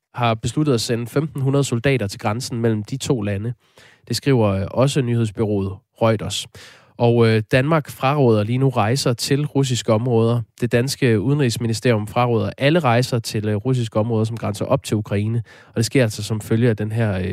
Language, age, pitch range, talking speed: Danish, 20-39, 105-130 Hz, 170 wpm